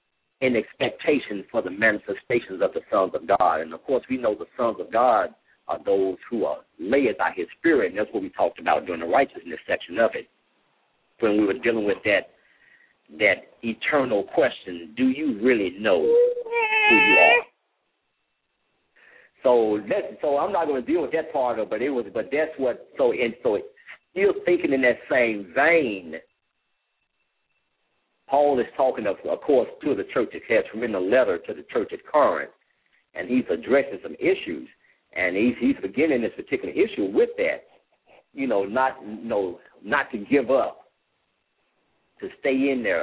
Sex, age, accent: male, 50-69, American